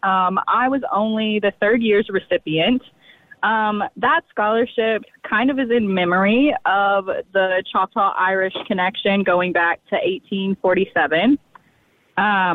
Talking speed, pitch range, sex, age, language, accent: 115 wpm, 175-225 Hz, female, 20-39, English, American